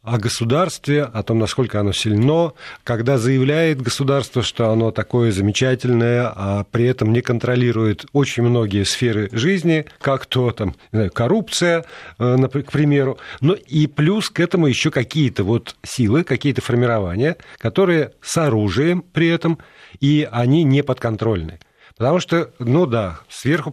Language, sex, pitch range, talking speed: Russian, male, 110-150 Hz, 145 wpm